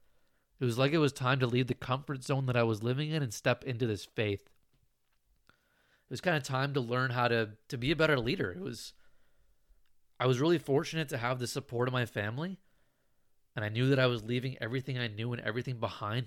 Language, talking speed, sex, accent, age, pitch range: English, 225 wpm, male, American, 20-39, 110-135 Hz